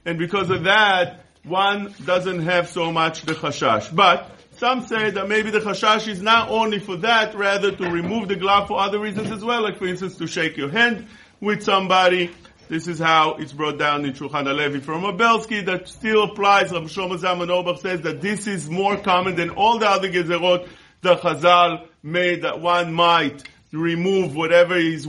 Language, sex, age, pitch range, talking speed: English, male, 50-69, 160-200 Hz, 190 wpm